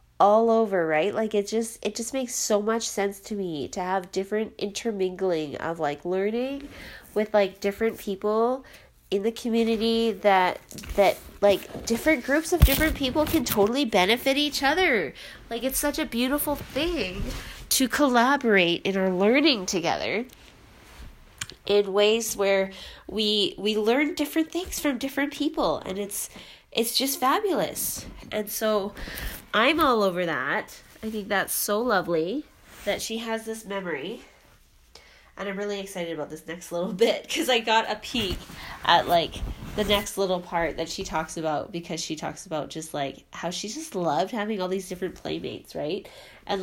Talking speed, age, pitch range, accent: 160 wpm, 20-39, 190-240 Hz, American